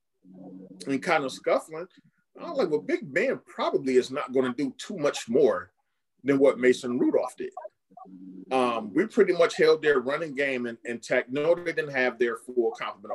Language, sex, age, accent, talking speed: English, male, 30-49, American, 185 wpm